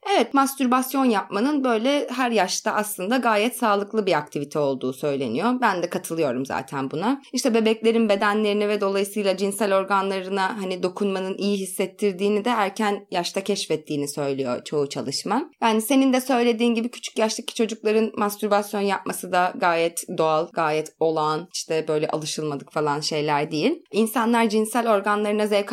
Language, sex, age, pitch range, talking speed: Turkish, female, 30-49, 180-235 Hz, 140 wpm